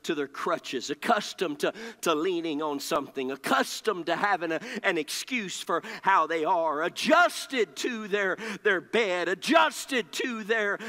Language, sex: English, male